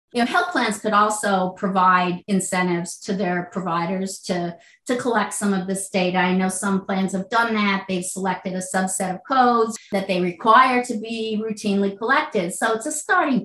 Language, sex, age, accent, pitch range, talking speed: English, female, 40-59, American, 195-250 Hz, 185 wpm